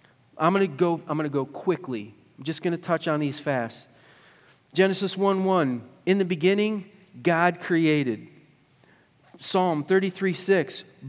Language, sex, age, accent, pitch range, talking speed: English, male, 40-59, American, 155-205 Hz, 150 wpm